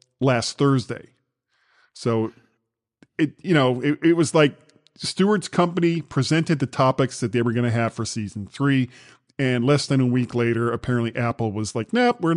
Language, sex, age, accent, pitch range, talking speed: English, male, 40-59, American, 120-170 Hz, 175 wpm